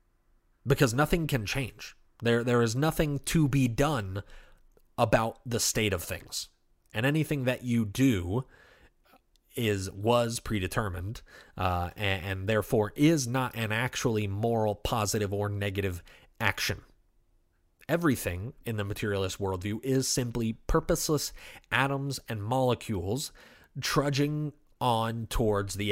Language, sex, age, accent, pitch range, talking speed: Ukrainian, male, 30-49, American, 100-135 Hz, 120 wpm